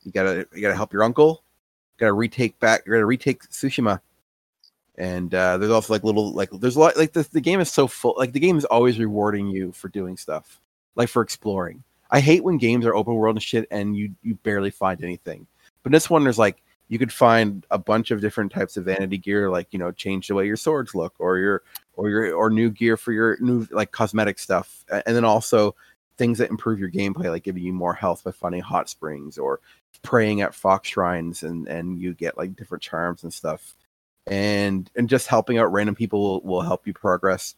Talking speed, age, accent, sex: 230 wpm, 30-49, American, male